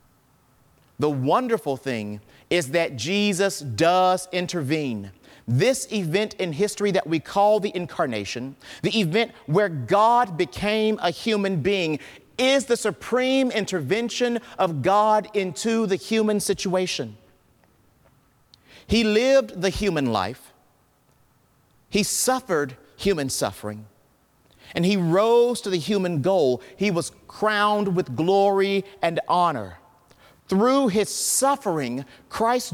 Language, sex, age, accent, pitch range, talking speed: English, male, 40-59, American, 130-205 Hz, 115 wpm